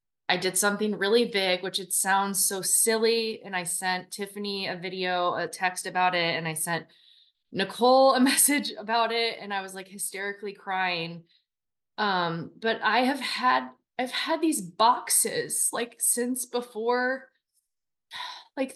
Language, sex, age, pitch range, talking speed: English, female, 20-39, 210-285 Hz, 150 wpm